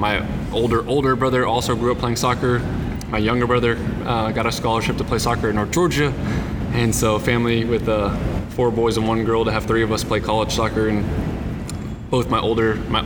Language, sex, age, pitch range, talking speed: English, male, 20-39, 110-120 Hz, 205 wpm